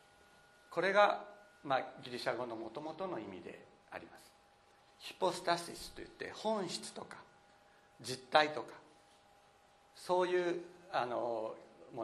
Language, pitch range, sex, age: Japanese, 135-205 Hz, male, 60-79